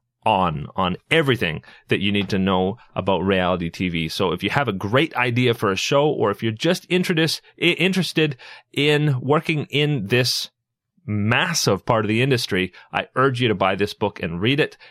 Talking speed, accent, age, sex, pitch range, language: 180 wpm, American, 30-49, male, 110-155 Hz, English